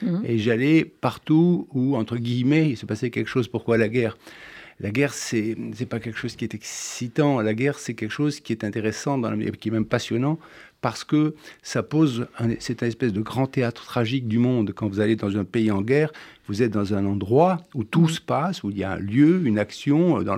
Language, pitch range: French, 110-145 Hz